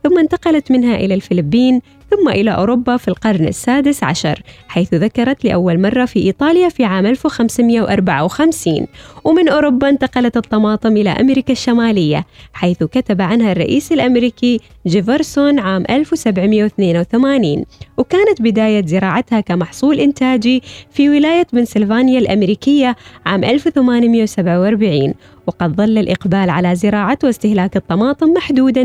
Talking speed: 115 wpm